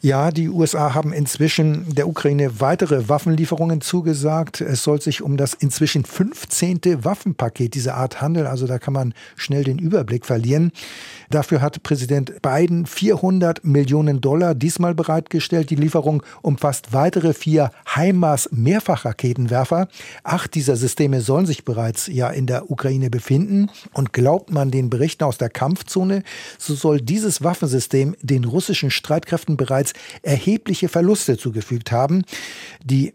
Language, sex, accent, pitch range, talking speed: German, male, German, 135-170 Hz, 140 wpm